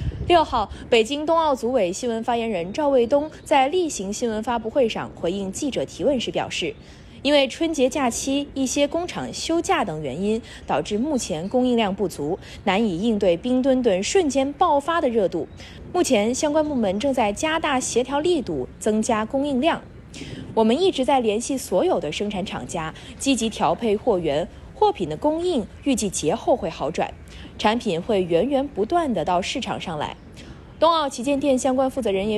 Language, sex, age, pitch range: Chinese, female, 20-39, 215-305 Hz